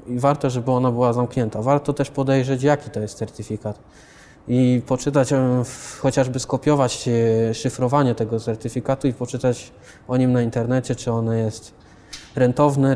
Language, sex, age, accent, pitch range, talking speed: Polish, male, 20-39, native, 120-135 Hz, 140 wpm